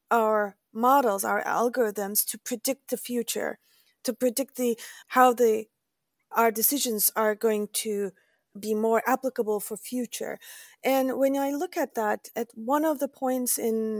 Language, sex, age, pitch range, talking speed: English, female, 40-59, 225-270 Hz, 150 wpm